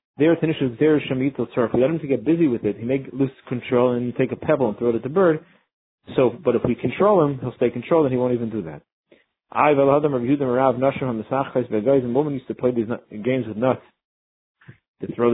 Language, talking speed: English, 240 wpm